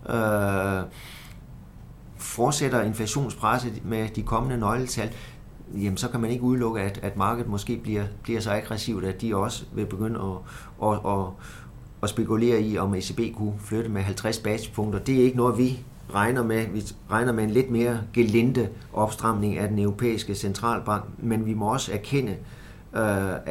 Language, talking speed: Danish, 165 wpm